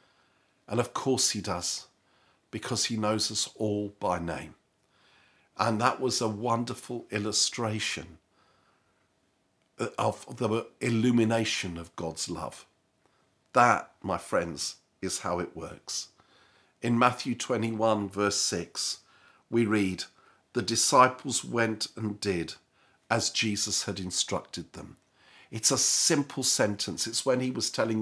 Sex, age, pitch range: male, 50-69, 105-125 Hz